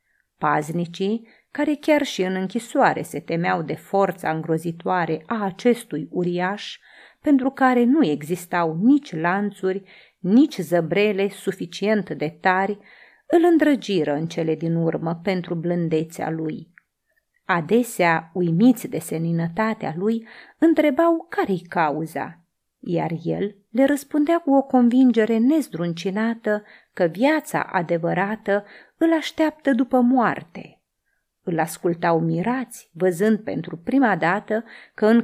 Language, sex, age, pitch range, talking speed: Romanian, female, 30-49, 175-245 Hz, 110 wpm